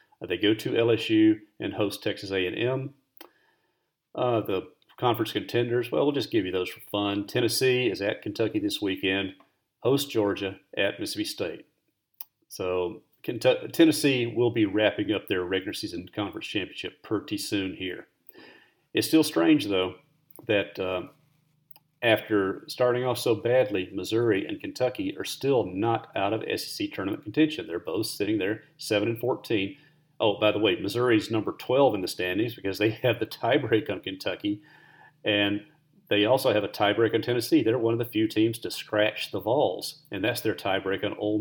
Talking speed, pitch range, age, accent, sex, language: 170 wpm, 105-150 Hz, 40-59, American, male, English